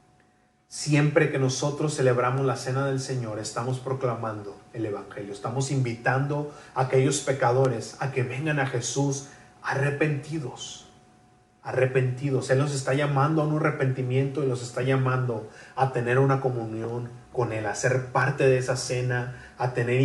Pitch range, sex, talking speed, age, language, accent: 120-140 Hz, male, 145 wpm, 30-49, Spanish, Mexican